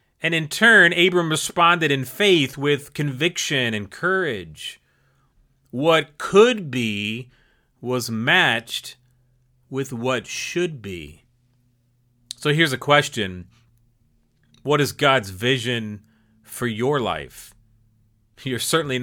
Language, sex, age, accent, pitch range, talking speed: English, male, 30-49, American, 120-155 Hz, 105 wpm